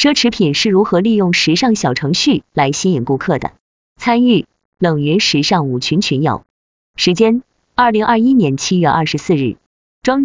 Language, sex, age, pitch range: Chinese, female, 20-39, 150-230 Hz